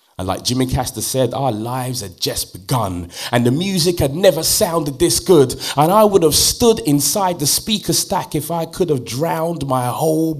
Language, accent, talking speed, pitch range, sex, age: English, British, 195 wpm, 130-175 Hz, male, 30-49